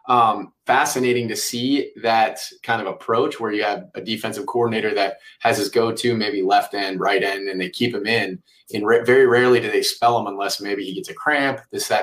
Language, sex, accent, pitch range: English, male, American, 120-150 Hz